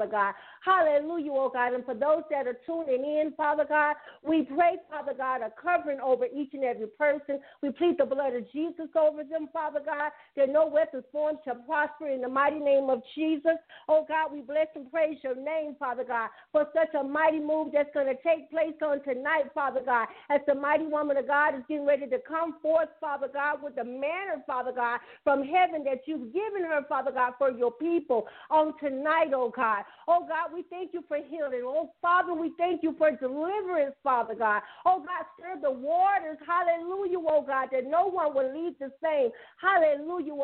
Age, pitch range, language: 50-69, 275-325 Hz, English